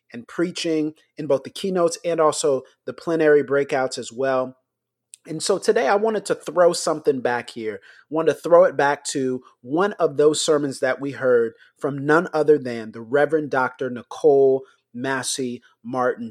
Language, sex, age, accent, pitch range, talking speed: English, male, 30-49, American, 135-180 Hz, 170 wpm